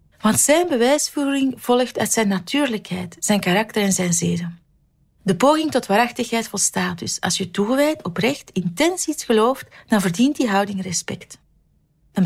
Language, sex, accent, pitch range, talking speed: Dutch, female, Dutch, 185-250 Hz, 150 wpm